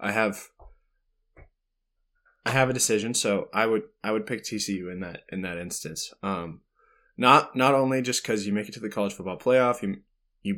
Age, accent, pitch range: 20-39, American, 100-130 Hz